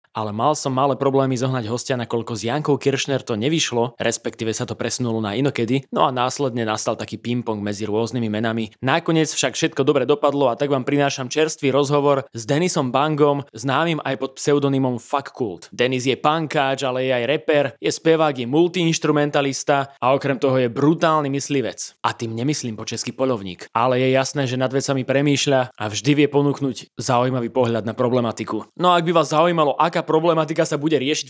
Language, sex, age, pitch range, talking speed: English, male, 20-39, 130-150 Hz, 185 wpm